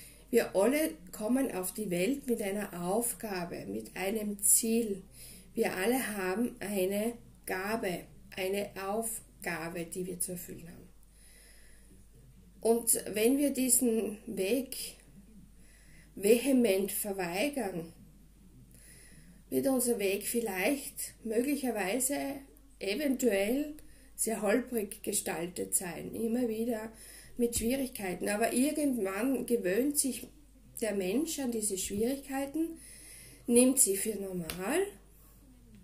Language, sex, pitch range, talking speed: German, female, 195-250 Hz, 95 wpm